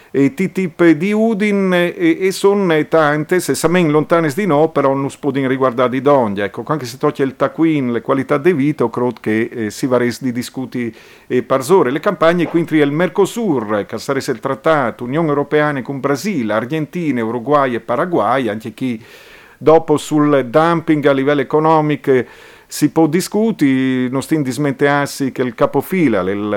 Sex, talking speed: male, 170 wpm